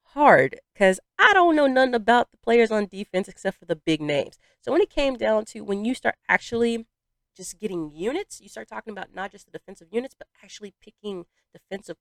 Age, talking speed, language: 30-49, 210 wpm, English